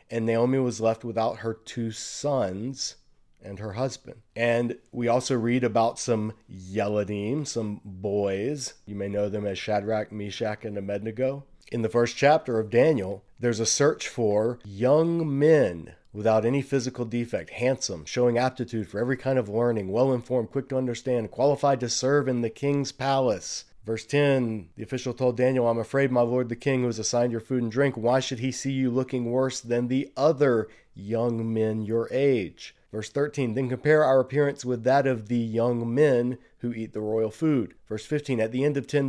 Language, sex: English, male